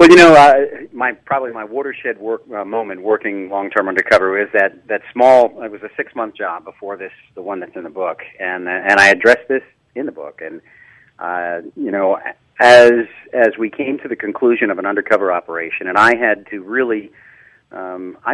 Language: English